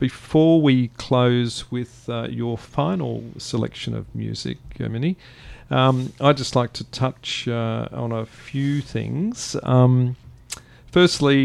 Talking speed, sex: 125 wpm, male